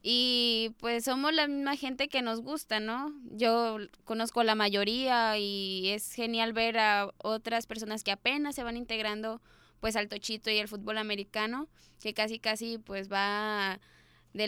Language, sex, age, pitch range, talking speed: Spanish, female, 20-39, 210-245 Hz, 165 wpm